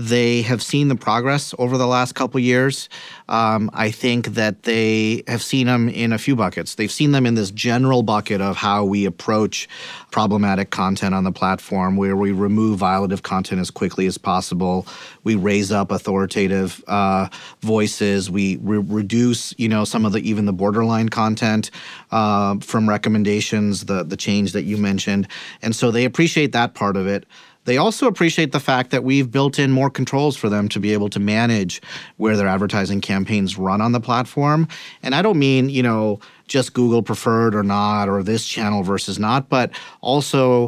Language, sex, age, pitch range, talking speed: English, male, 30-49, 100-125 Hz, 185 wpm